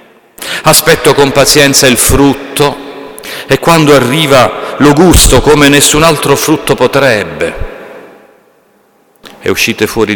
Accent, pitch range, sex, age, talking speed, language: native, 115-195 Hz, male, 50-69, 105 wpm, Italian